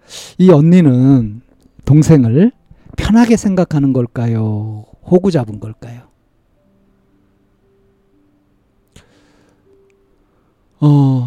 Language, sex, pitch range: Korean, male, 115-150 Hz